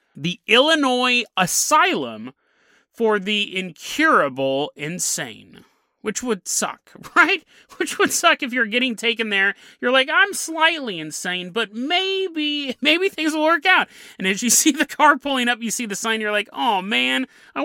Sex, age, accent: male, 30-49, American